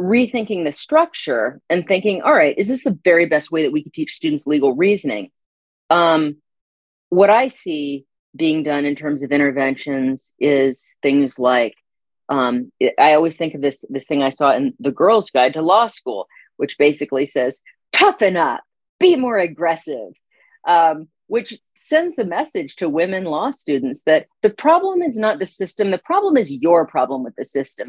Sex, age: female, 40-59